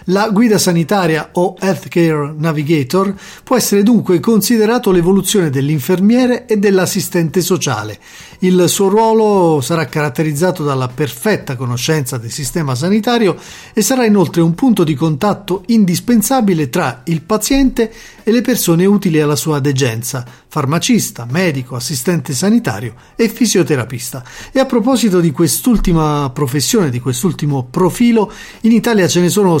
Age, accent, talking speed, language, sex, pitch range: 40-59, native, 130 wpm, Italian, male, 150-200 Hz